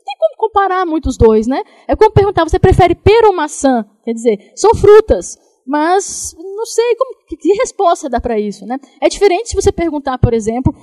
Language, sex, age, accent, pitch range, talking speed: Portuguese, female, 10-29, Brazilian, 230-340 Hz, 185 wpm